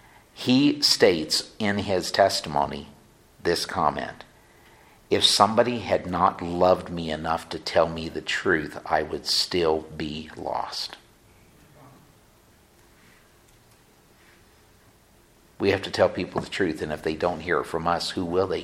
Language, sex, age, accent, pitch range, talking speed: English, male, 50-69, American, 85-105 Hz, 135 wpm